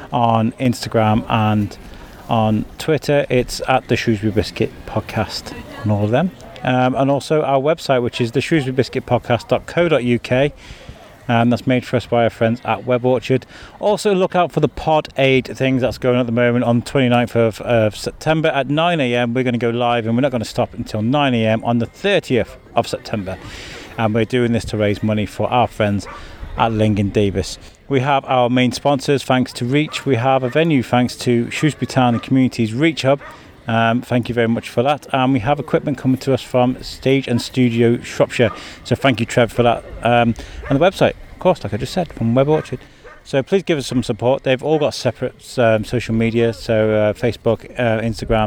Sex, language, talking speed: male, English, 205 wpm